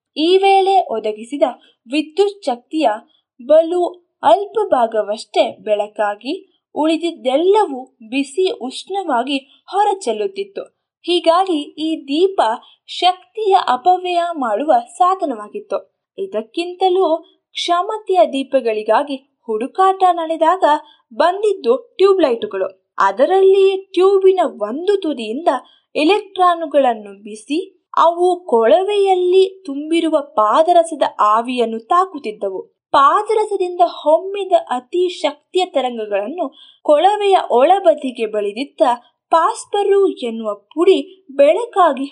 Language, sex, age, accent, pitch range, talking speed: Kannada, female, 20-39, native, 270-375 Hz, 75 wpm